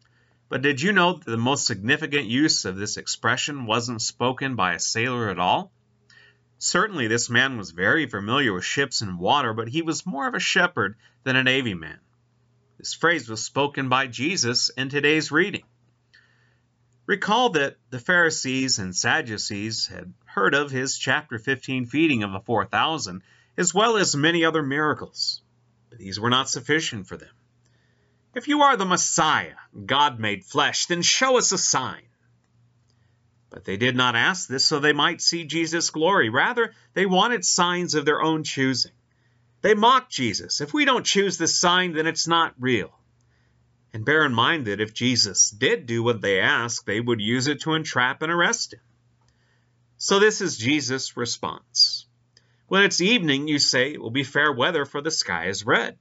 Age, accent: 30-49, American